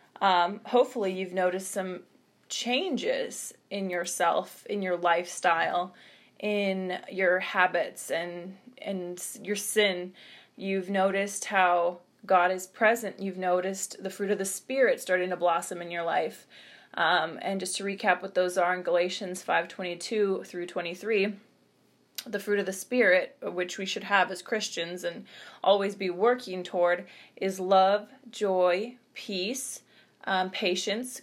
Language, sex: English, female